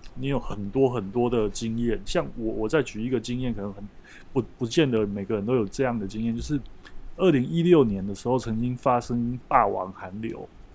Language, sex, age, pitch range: Chinese, male, 20-39, 110-135 Hz